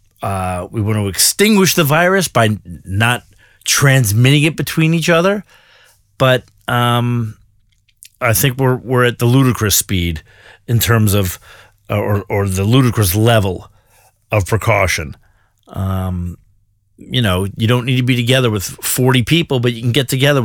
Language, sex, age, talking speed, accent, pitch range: English, male, 30-49, 150 wpm, American, 105-135 Hz